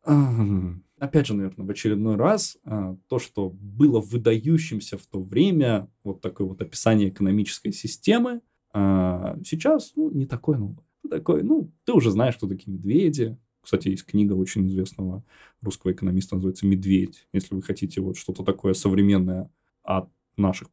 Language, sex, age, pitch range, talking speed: Russian, male, 20-39, 100-160 Hz, 145 wpm